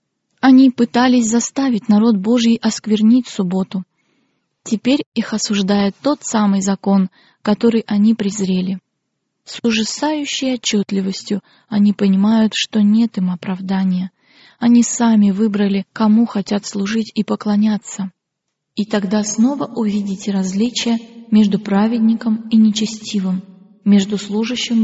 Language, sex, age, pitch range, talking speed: Russian, female, 20-39, 200-230 Hz, 105 wpm